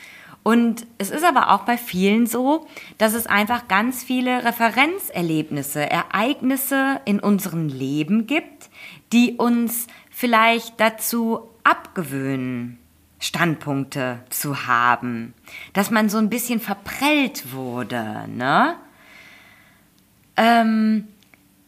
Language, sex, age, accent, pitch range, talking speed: German, female, 20-39, German, 175-235 Hz, 100 wpm